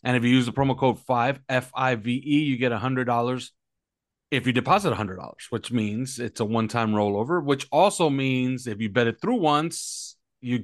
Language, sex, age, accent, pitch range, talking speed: English, male, 30-49, American, 115-150 Hz, 180 wpm